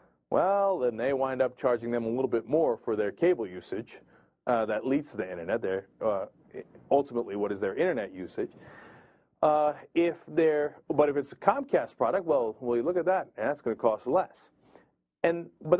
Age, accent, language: 40-59, American, English